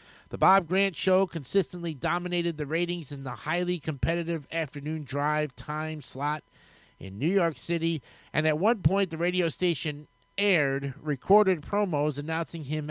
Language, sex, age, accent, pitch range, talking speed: English, male, 50-69, American, 145-185 Hz, 150 wpm